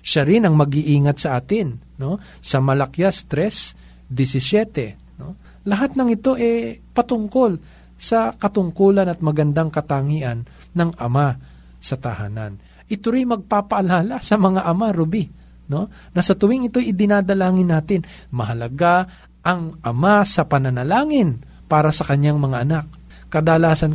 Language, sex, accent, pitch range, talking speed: Filipino, male, native, 125-190 Hz, 125 wpm